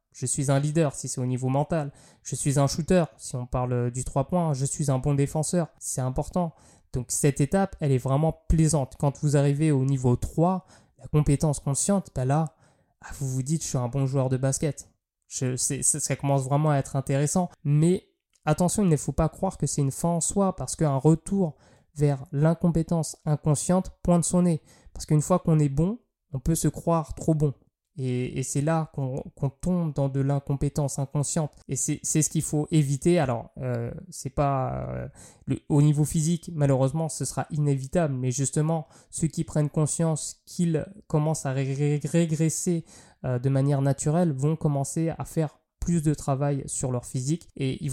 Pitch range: 135-160 Hz